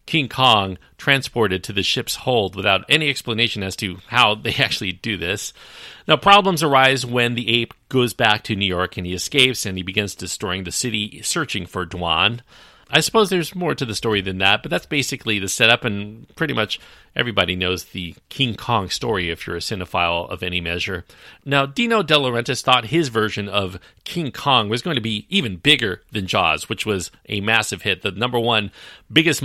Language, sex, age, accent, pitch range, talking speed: English, male, 40-59, American, 95-130 Hz, 200 wpm